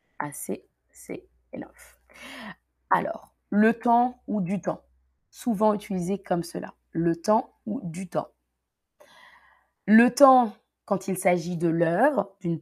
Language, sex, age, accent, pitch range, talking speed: French, female, 20-39, French, 175-225 Hz, 125 wpm